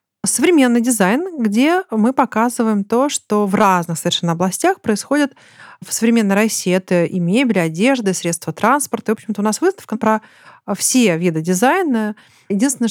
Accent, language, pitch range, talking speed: native, Russian, 185-220 Hz, 155 wpm